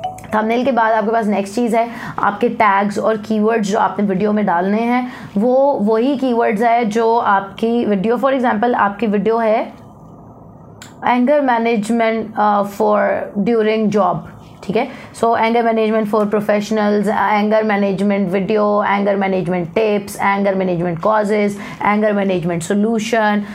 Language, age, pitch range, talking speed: English, 20-39, 200-240 Hz, 125 wpm